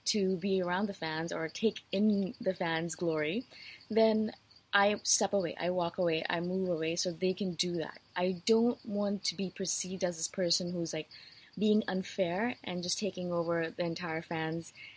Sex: female